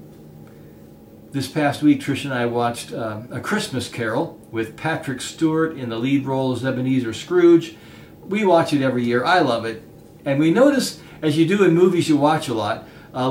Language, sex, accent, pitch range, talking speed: English, male, American, 115-155 Hz, 190 wpm